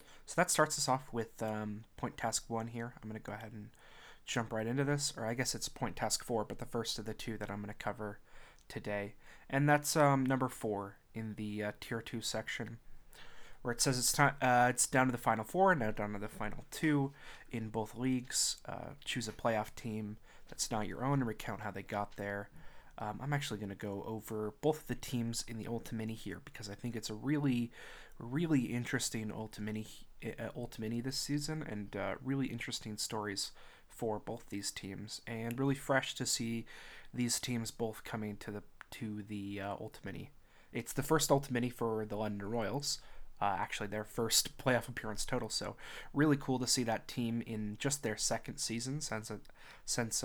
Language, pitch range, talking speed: English, 105-125 Hz, 205 wpm